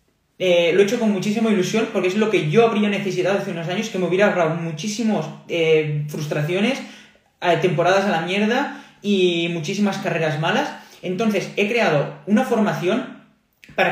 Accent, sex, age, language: Spanish, male, 20-39, Spanish